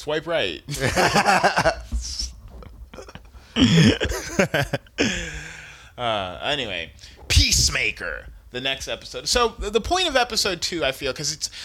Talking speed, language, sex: 95 wpm, English, male